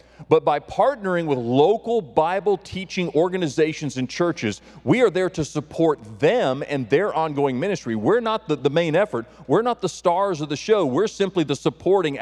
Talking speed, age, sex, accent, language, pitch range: 180 wpm, 40-59, male, American, English, 125-175 Hz